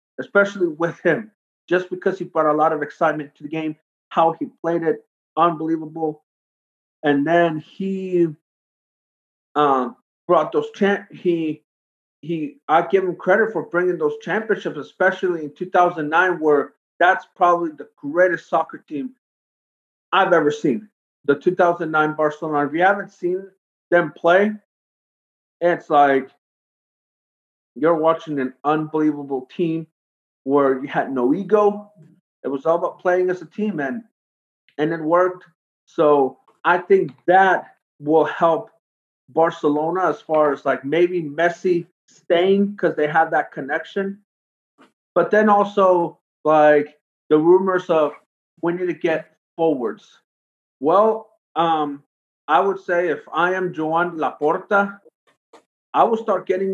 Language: English